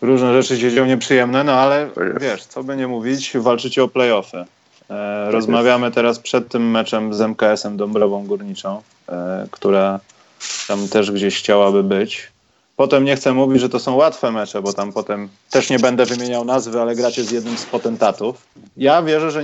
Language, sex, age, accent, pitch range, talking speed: Polish, male, 30-49, native, 115-145 Hz, 180 wpm